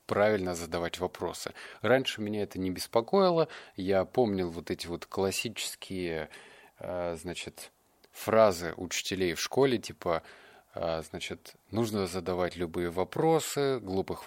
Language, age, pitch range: Russian, 30-49, 90-115 Hz